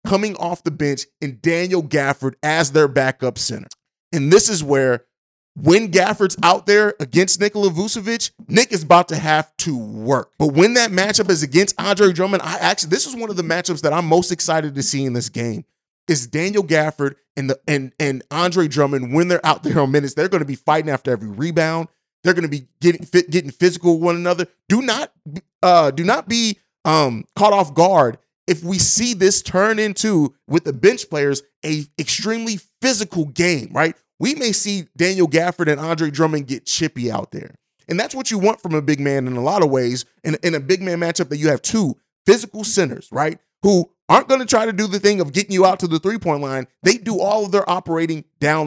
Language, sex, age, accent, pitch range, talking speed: English, male, 30-49, American, 145-190 Hz, 215 wpm